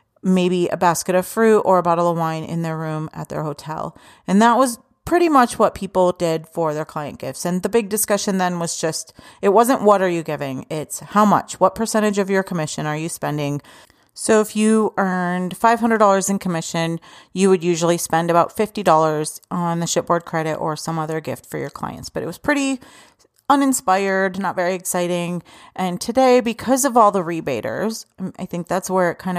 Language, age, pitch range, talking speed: English, 30-49, 165-210 Hz, 200 wpm